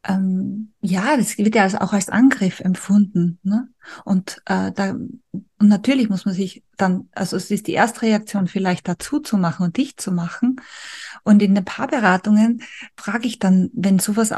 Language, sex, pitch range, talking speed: German, female, 185-220 Hz, 170 wpm